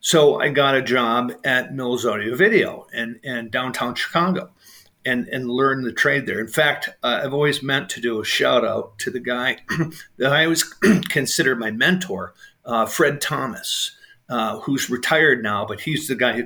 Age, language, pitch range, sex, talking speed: 50-69, English, 120-150 Hz, male, 190 wpm